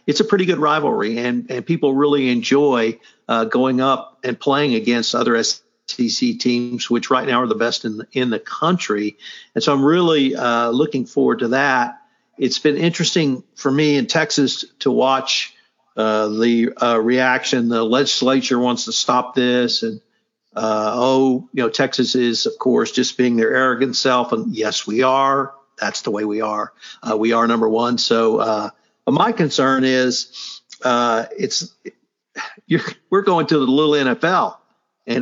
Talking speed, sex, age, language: 170 wpm, male, 50-69, English